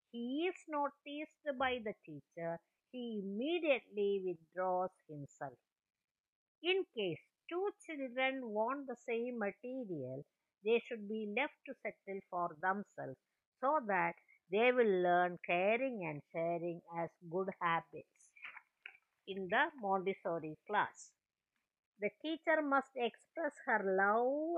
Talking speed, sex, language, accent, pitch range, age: 115 wpm, female, English, Indian, 185-265 Hz, 50-69